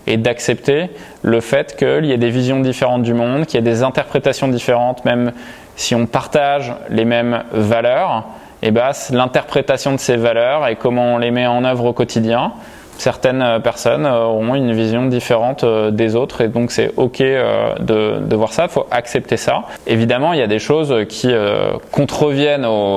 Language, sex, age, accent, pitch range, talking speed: French, male, 20-39, French, 110-130 Hz, 180 wpm